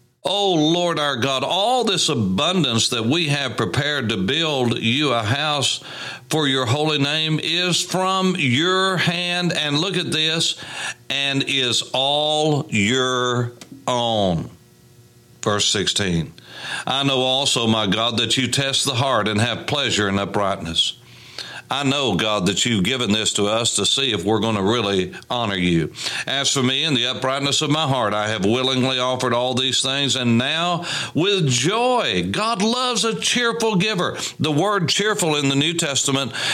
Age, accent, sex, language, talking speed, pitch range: 60-79, American, male, English, 165 wpm, 125-180 Hz